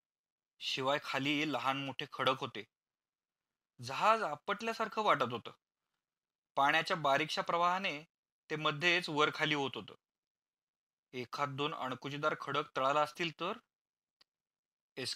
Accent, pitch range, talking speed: native, 135-165 Hz, 105 wpm